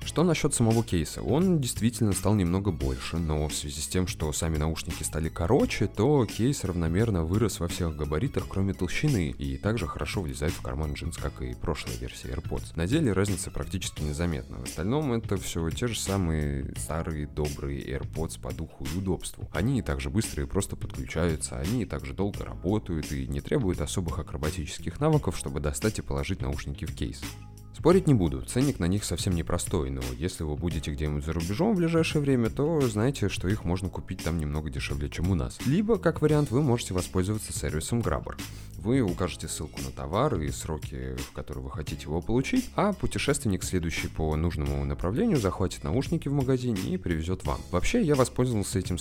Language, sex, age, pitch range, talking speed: Russian, male, 20-39, 75-110 Hz, 185 wpm